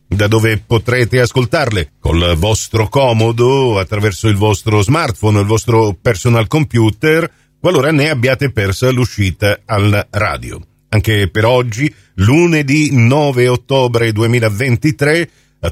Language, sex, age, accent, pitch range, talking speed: Italian, male, 50-69, native, 105-130 Hz, 115 wpm